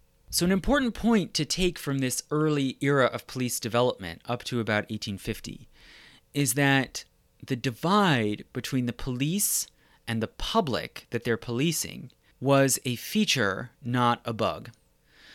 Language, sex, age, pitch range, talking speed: English, male, 30-49, 110-150 Hz, 140 wpm